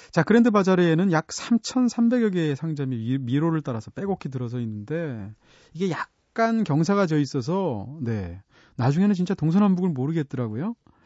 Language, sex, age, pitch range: Korean, male, 30-49, 125-185 Hz